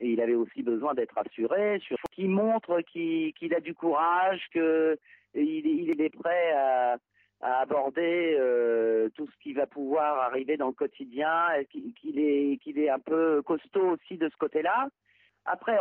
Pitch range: 125-185 Hz